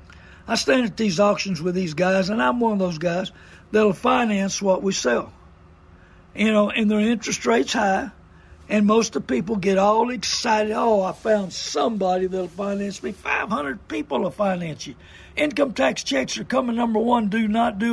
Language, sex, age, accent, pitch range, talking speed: English, male, 60-79, American, 185-225 Hz, 185 wpm